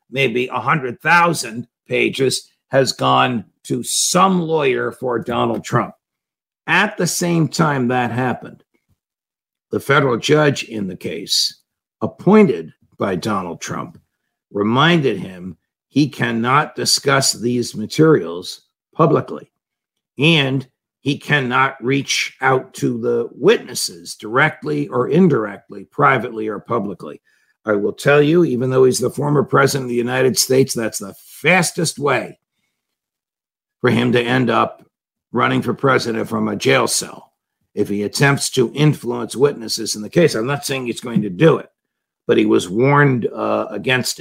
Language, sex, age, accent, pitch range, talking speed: English, male, 60-79, American, 115-145 Hz, 140 wpm